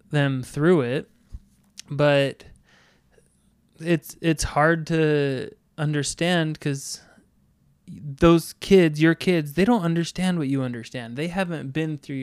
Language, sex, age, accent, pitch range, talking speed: English, male, 20-39, American, 135-160 Hz, 120 wpm